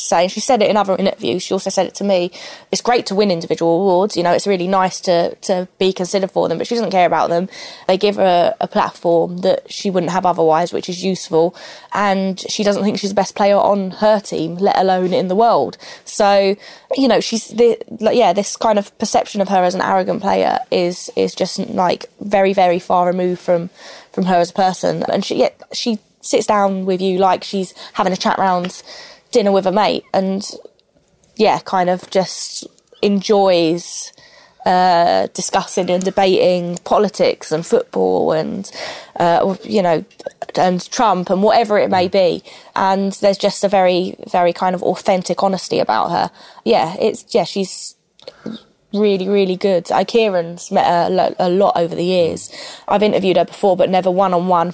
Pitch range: 180-205 Hz